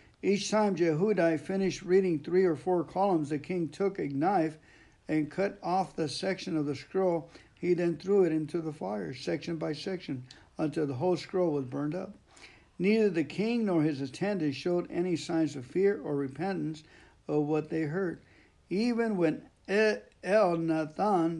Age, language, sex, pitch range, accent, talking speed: 60-79, English, male, 150-180 Hz, American, 165 wpm